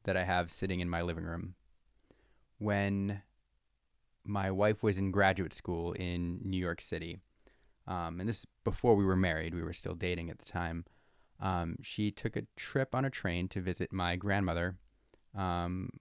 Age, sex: 20-39, male